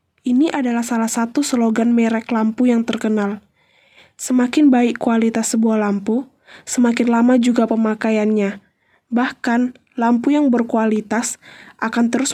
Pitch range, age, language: 225-250 Hz, 10-29, Indonesian